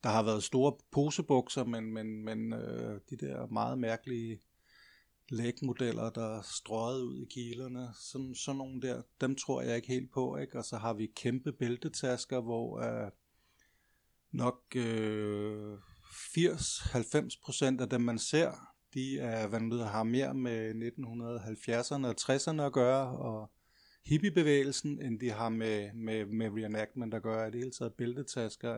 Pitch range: 110-130 Hz